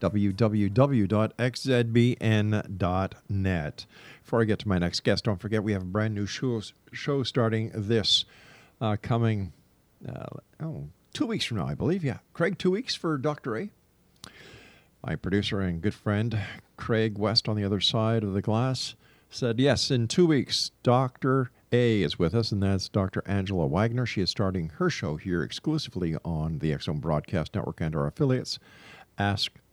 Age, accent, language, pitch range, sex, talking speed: 50-69, American, English, 100-125 Hz, male, 165 wpm